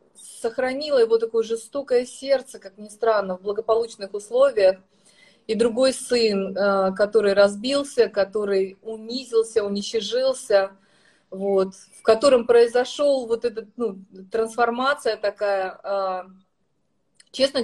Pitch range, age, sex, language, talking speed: 205-245 Hz, 30-49, female, Russian, 100 wpm